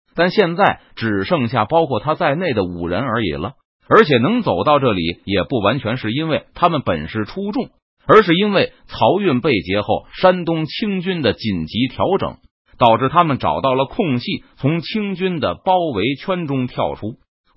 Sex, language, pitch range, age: male, Chinese, 125-180 Hz, 30-49